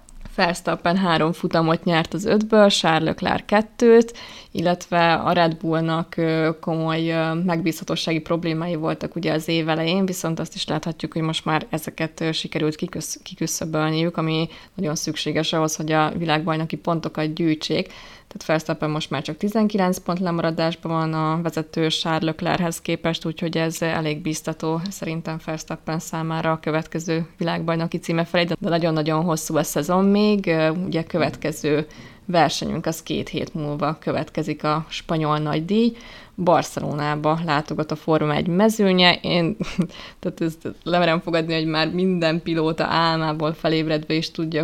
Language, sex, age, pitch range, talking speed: Hungarian, female, 20-39, 160-175 Hz, 135 wpm